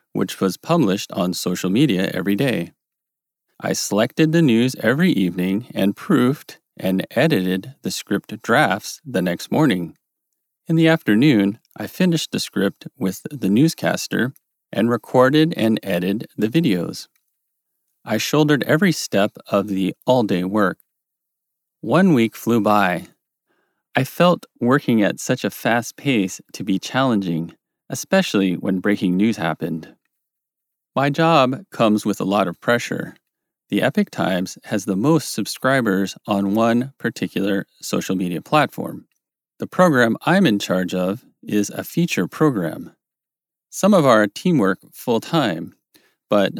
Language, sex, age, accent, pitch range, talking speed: English, male, 30-49, American, 95-150 Hz, 135 wpm